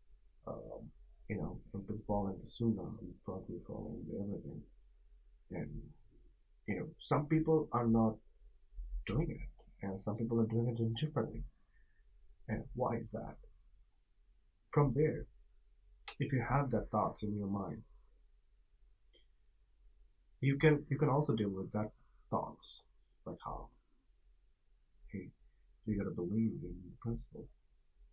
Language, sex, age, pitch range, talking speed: English, male, 30-49, 90-115 Hz, 130 wpm